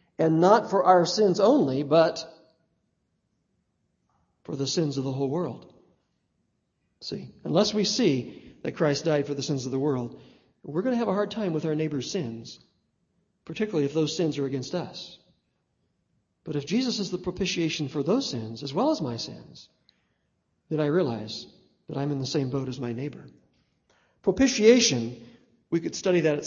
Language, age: English, 50-69